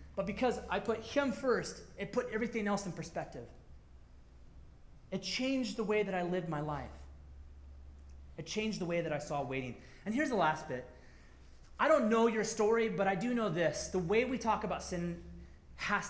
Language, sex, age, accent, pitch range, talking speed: English, male, 30-49, American, 160-245 Hz, 190 wpm